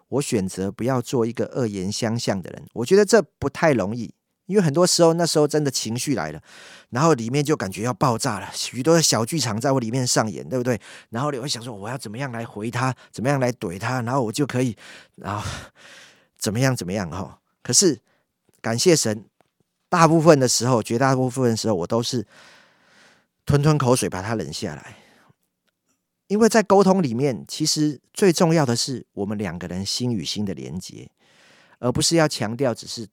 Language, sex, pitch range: Chinese, male, 110-150 Hz